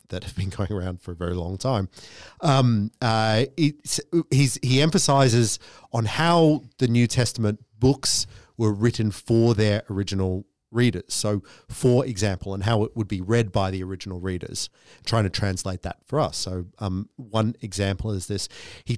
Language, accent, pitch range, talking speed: English, Australian, 100-130 Hz, 165 wpm